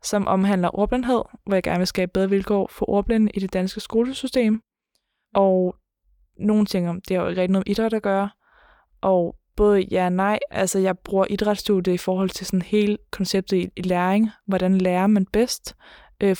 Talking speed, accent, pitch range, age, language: 185 wpm, native, 185-210 Hz, 20-39, Danish